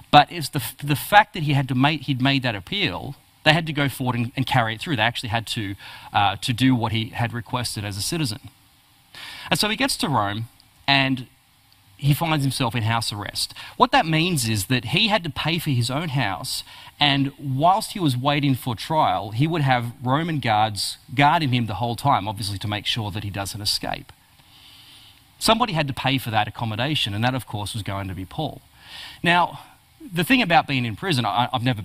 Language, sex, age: English, male, 30-49